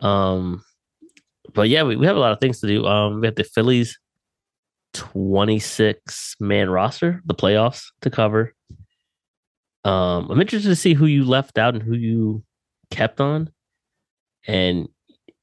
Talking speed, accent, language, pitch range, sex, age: 150 wpm, American, English, 95-120 Hz, male, 20-39